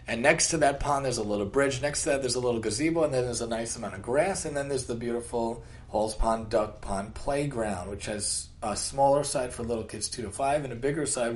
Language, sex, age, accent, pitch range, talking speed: English, male, 40-59, American, 115-145 Hz, 260 wpm